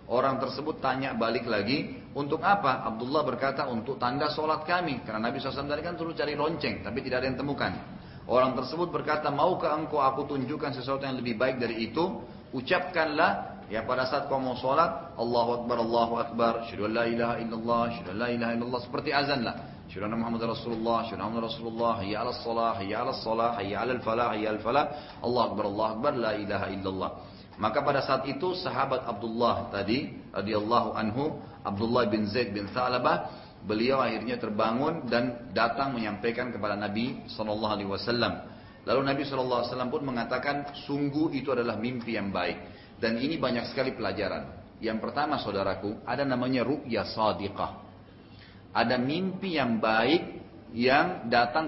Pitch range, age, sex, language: 110-135 Hz, 30-49, male, English